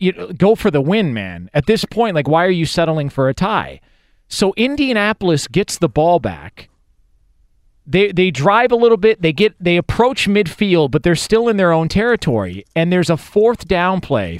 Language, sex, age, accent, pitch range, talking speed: English, male, 40-59, American, 145-210 Hz, 195 wpm